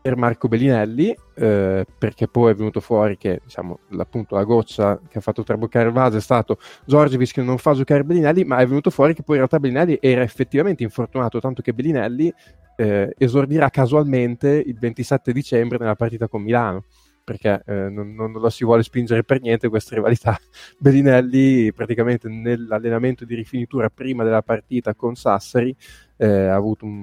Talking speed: 175 wpm